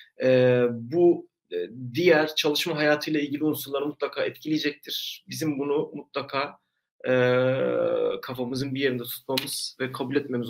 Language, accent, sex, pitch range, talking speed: Turkish, native, male, 130-160 Hz, 115 wpm